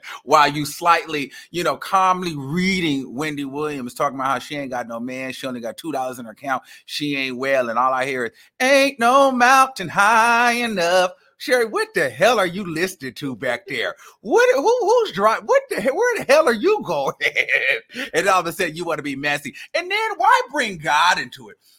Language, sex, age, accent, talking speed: English, male, 30-49, American, 210 wpm